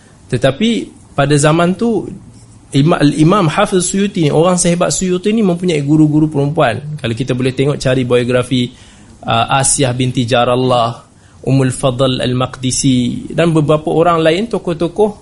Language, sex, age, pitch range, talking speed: Malay, male, 20-39, 125-170 Hz, 135 wpm